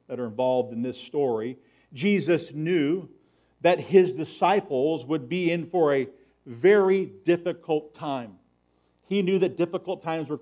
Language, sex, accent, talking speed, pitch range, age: English, male, American, 145 wpm, 125-180 Hz, 50-69